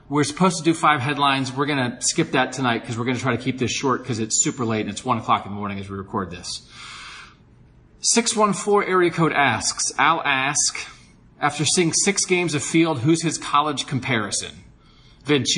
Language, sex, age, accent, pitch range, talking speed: English, male, 30-49, American, 115-150 Hz, 205 wpm